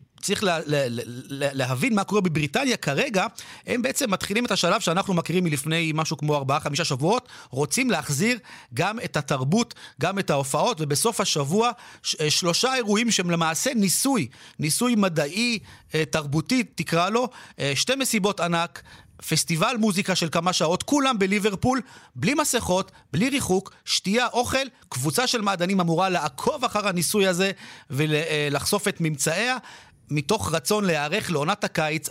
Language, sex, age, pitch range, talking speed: Hebrew, male, 40-59, 150-205 Hz, 135 wpm